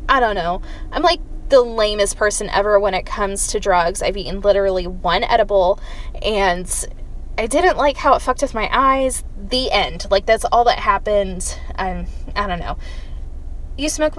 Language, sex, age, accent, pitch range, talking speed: English, female, 20-39, American, 195-255 Hz, 180 wpm